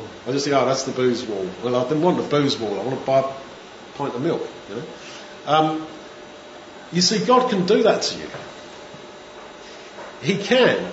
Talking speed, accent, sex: 190 wpm, British, male